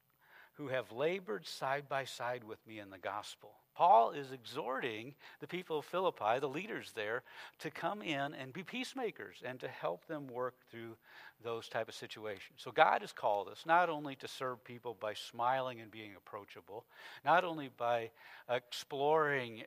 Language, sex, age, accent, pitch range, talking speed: English, male, 60-79, American, 110-140 Hz, 170 wpm